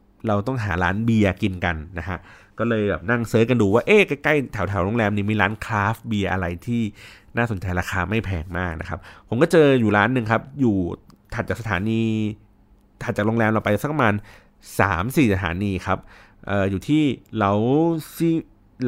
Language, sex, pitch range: Thai, male, 95-115 Hz